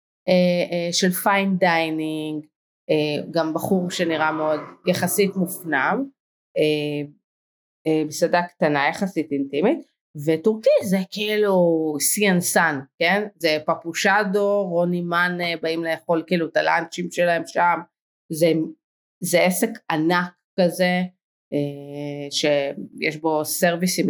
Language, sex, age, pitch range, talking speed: Hebrew, female, 30-49, 150-185 Hz, 105 wpm